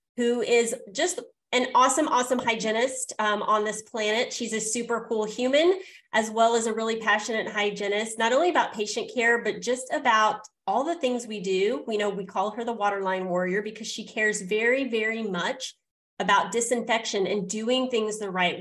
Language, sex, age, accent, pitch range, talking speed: English, female, 30-49, American, 205-245 Hz, 185 wpm